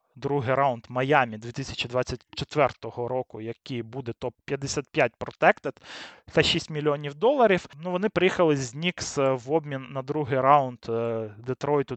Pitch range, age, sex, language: 125-150 Hz, 20-39, male, Russian